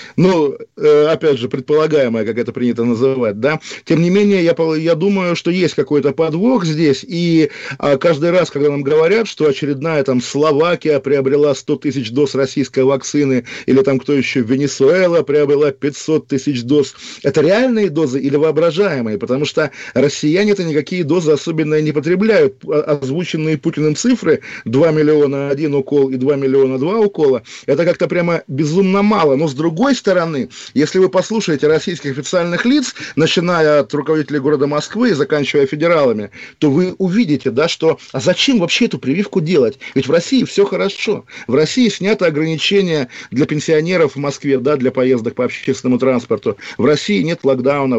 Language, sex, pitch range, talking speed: Russian, male, 140-180 Hz, 160 wpm